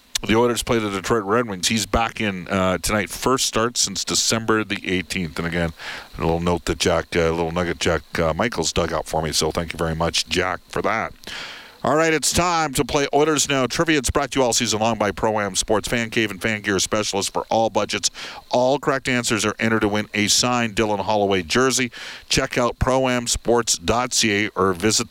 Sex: male